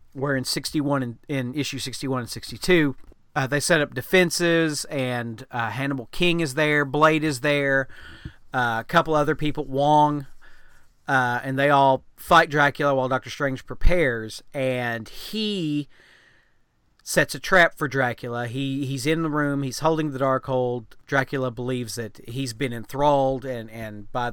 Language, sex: English, male